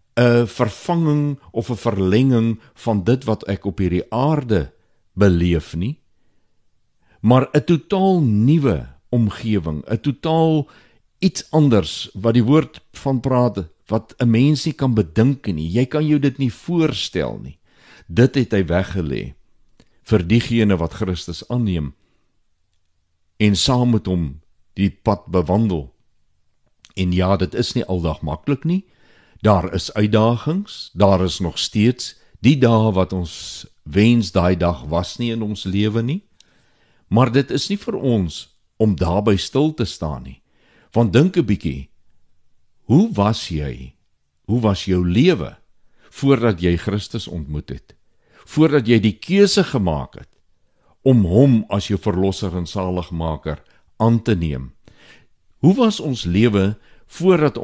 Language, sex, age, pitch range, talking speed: Swedish, male, 60-79, 90-125 Hz, 140 wpm